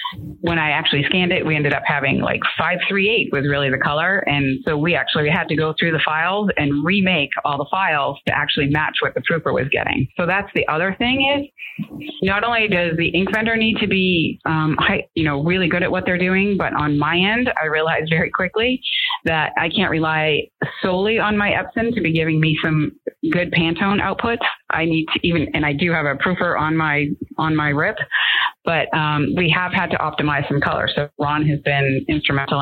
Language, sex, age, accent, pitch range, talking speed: English, female, 30-49, American, 145-185 Hz, 215 wpm